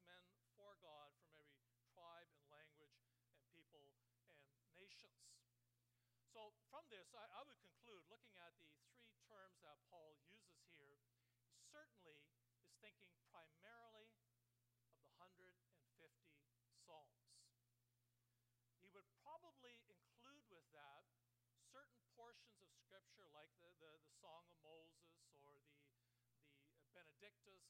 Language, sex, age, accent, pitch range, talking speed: English, male, 60-79, American, 120-175 Hz, 120 wpm